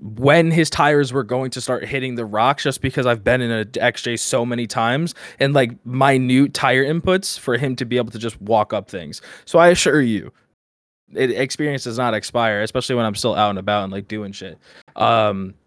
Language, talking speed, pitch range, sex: English, 210 wpm, 100-125 Hz, male